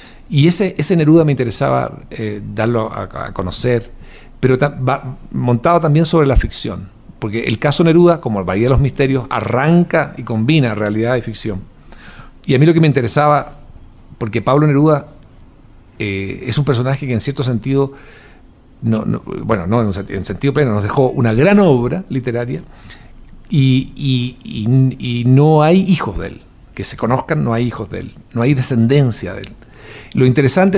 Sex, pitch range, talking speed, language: male, 110-145 Hz, 180 wpm, Spanish